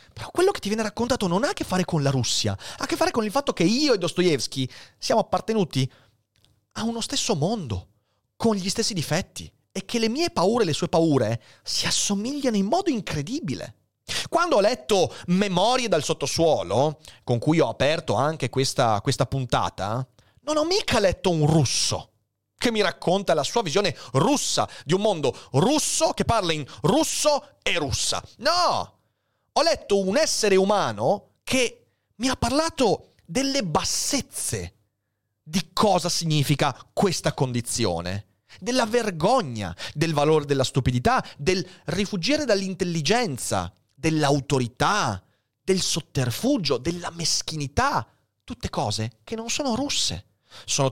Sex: male